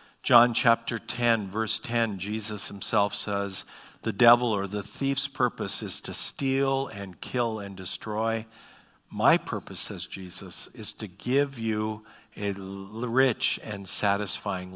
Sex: male